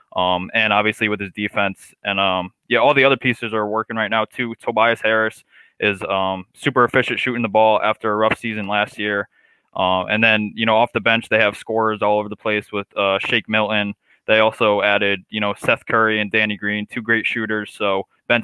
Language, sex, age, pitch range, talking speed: English, male, 20-39, 100-115 Hz, 220 wpm